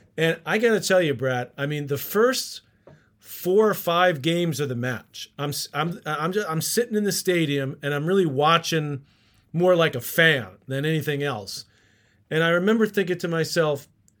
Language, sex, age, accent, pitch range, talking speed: English, male, 40-59, American, 145-185 Hz, 185 wpm